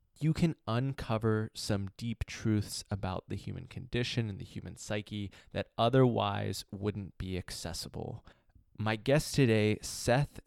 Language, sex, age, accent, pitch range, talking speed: English, male, 20-39, American, 100-115 Hz, 130 wpm